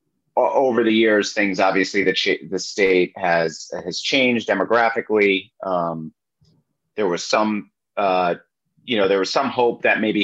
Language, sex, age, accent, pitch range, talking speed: English, male, 30-49, American, 95-135 Hz, 150 wpm